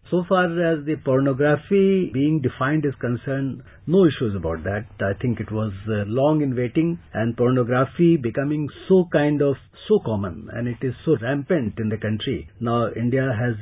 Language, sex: English, male